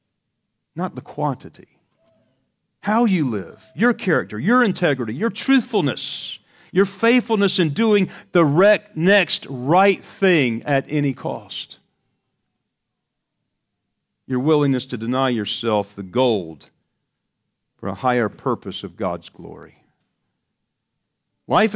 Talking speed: 105 wpm